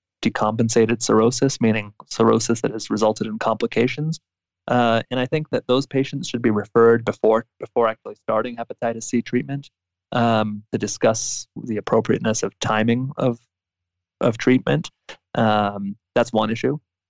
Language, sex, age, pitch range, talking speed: English, male, 20-39, 100-125 Hz, 145 wpm